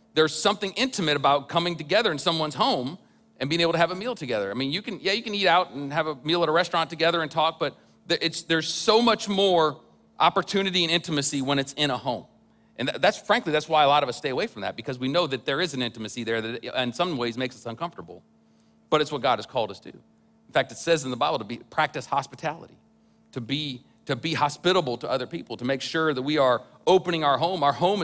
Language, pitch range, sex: English, 130-170 Hz, male